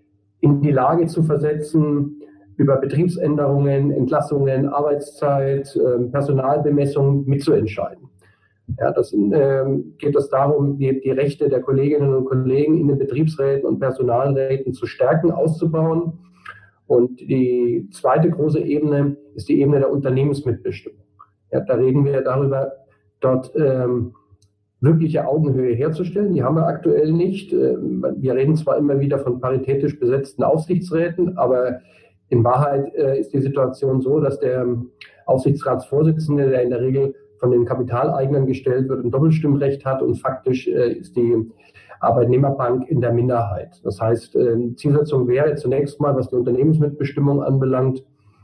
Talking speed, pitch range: 135 wpm, 125-150 Hz